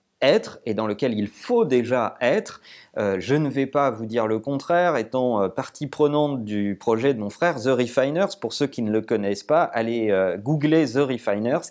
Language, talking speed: French, 205 wpm